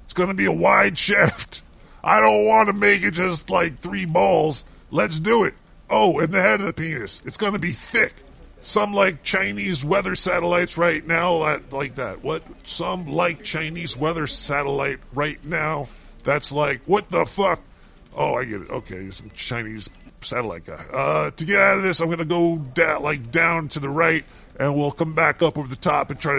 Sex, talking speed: female, 195 wpm